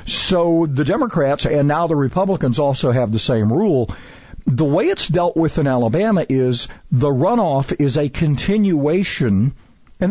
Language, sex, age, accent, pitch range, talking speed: English, male, 50-69, American, 125-170 Hz, 155 wpm